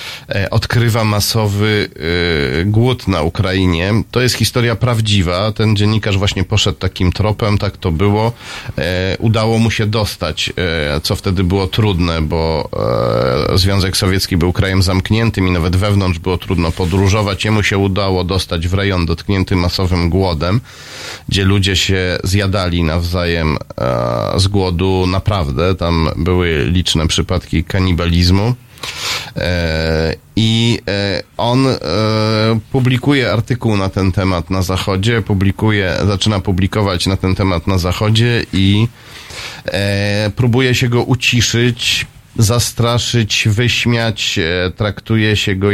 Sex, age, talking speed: male, 40-59, 115 wpm